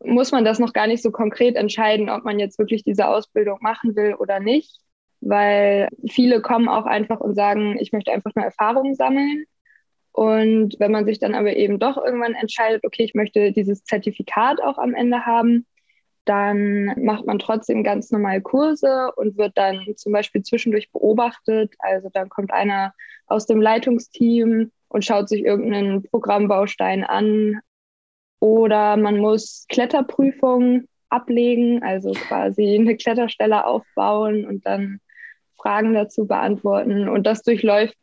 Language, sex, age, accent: German, female, 20-39, German